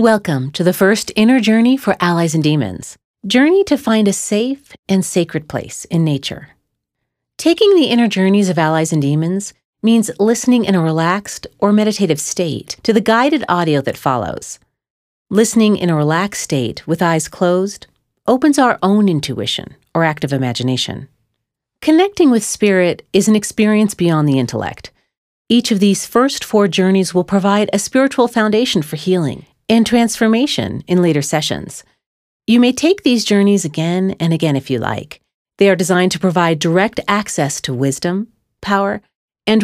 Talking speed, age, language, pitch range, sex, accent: 160 wpm, 40-59, English, 160-225 Hz, female, American